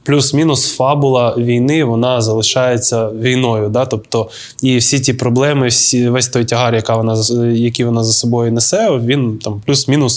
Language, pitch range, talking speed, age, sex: Ukrainian, 115-130 Hz, 150 wpm, 20-39, male